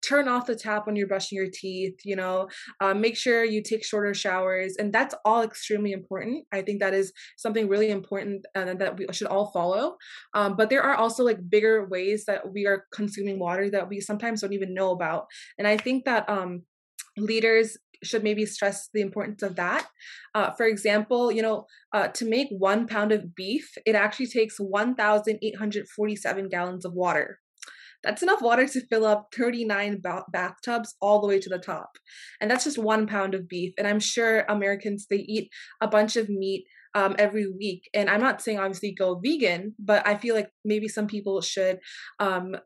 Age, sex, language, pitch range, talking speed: 20-39, female, English, 195-220 Hz, 195 wpm